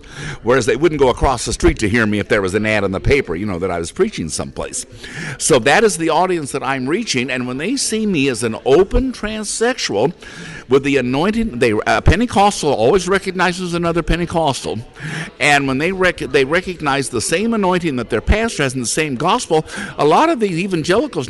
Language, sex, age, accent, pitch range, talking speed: English, male, 60-79, American, 125-185 Hz, 210 wpm